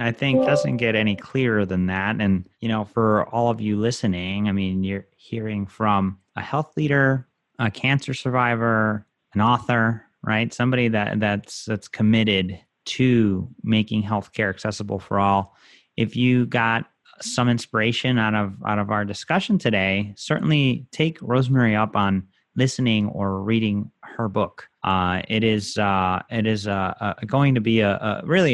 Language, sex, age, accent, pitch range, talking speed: English, male, 30-49, American, 100-120 Hz, 160 wpm